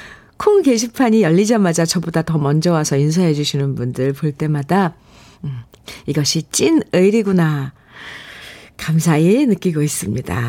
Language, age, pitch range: Korean, 50-69, 155-230 Hz